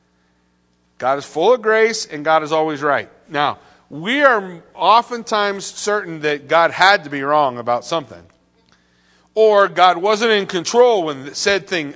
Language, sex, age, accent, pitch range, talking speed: English, male, 40-59, American, 145-210 Hz, 155 wpm